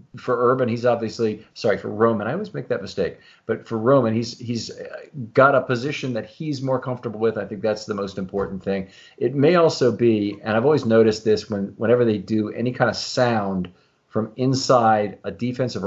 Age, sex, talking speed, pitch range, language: 40-59, male, 200 wpm, 105-130 Hz, English